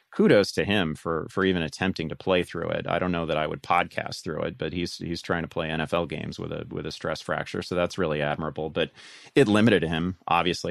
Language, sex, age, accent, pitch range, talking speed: English, male, 30-49, American, 80-100 Hz, 240 wpm